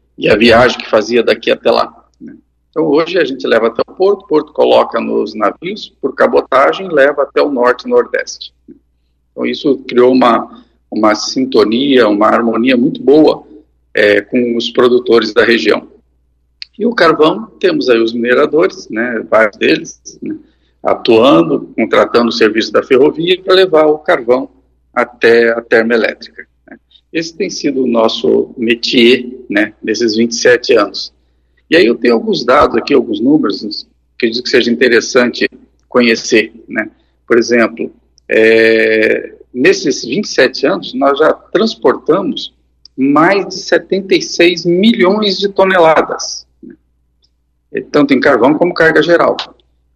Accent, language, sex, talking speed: Brazilian, Portuguese, male, 140 wpm